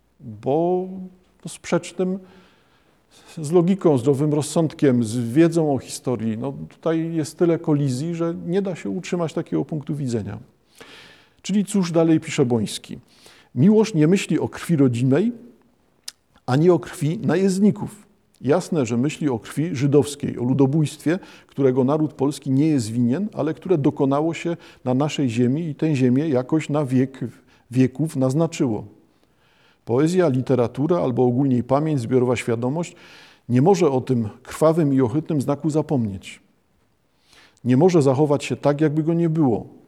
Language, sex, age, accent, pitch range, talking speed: Polish, male, 50-69, native, 130-165 Hz, 140 wpm